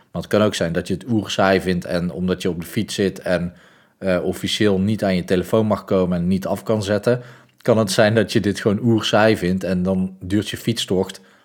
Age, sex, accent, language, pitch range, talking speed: 40-59, male, Dutch, Dutch, 90-105 Hz, 235 wpm